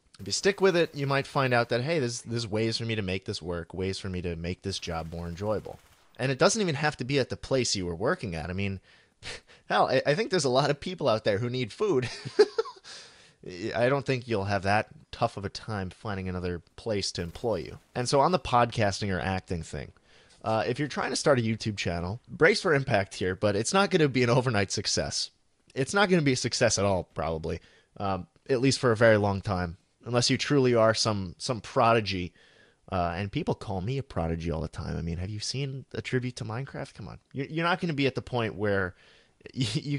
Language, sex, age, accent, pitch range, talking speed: English, male, 30-49, American, 95-135 Hz, 245 wpm